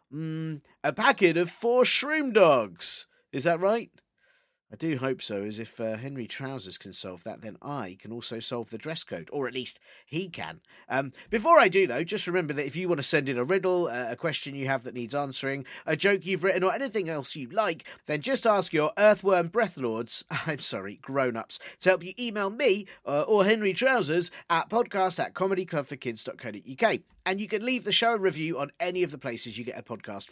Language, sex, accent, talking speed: English, male, British, 210 wpm